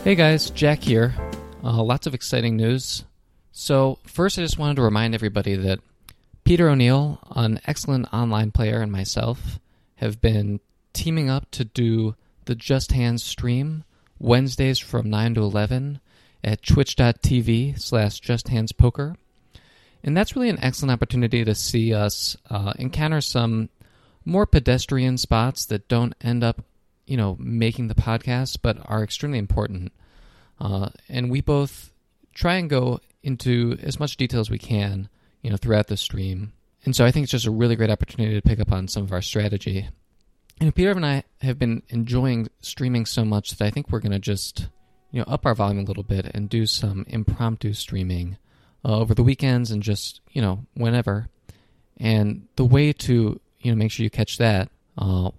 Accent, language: American, English